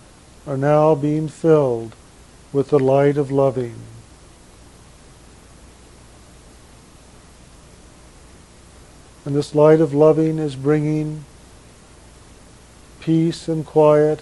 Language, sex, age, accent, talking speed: English, male, 50-69, American, 80 wpm